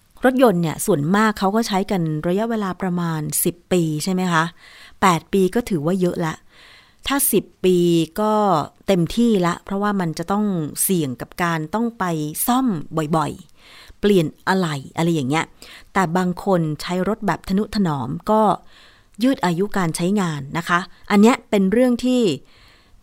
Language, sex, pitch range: Thai, female, 165-210 Hz